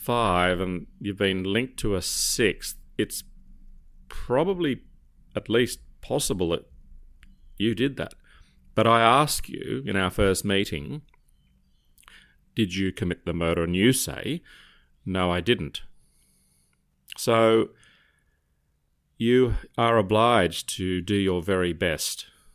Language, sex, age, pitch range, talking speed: English, male, 30-49, 80-105 Hz, 120 wpm